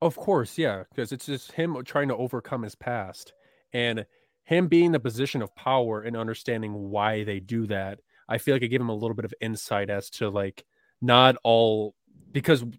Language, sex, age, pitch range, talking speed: English, male, 20-39, 105-130 Hz, 195 wpm